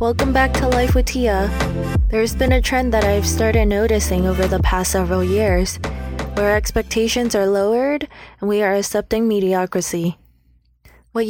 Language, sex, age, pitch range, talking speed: English, female, 20-39, 170-215 Hz, 155 wpm